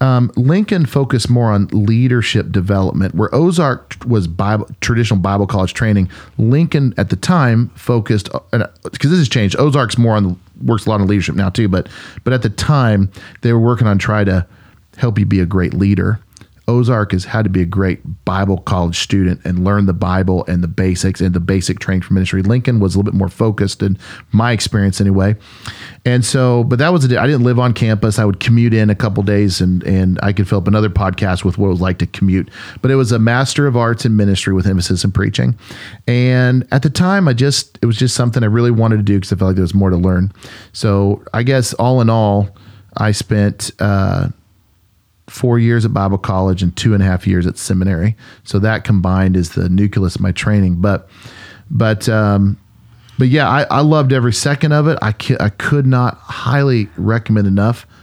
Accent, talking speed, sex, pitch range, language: American, 215 wpm, male, 95-120 Hz, English